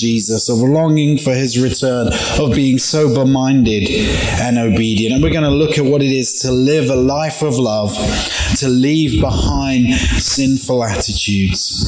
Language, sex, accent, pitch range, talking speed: English, male, British, 110-185 Hz, 155 wpm